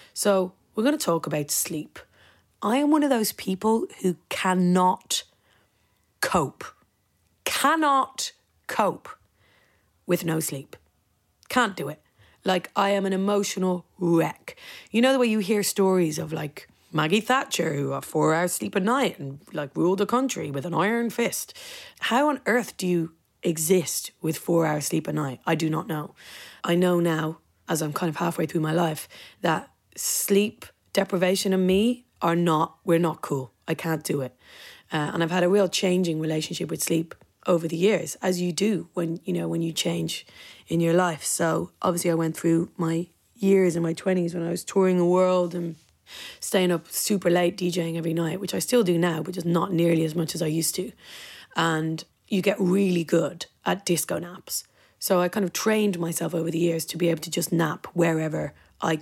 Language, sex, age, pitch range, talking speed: English, female, 30-49, 165-195 Hz, 190 wpm